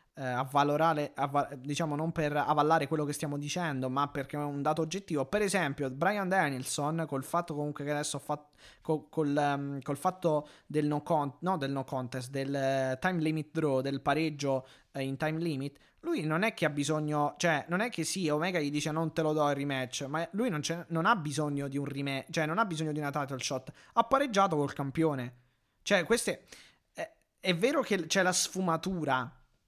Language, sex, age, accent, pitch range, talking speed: Italian, male, 20-39, native, 145-175 Hz, 205 wpm